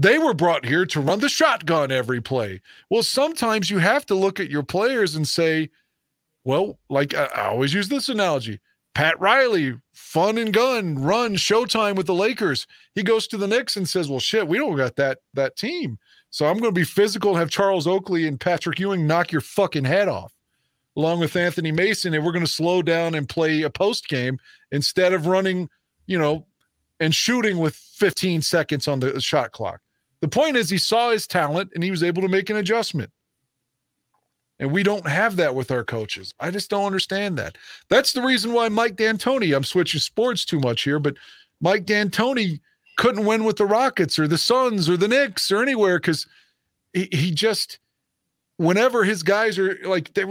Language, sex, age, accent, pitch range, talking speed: English, male, 40-59, American, 150-205 Hz, 200 wpm